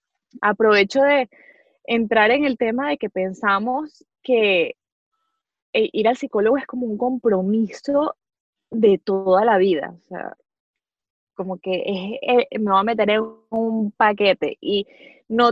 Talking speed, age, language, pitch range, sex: 130 wpm, 20-39, Spanish, 205-275 Hz, female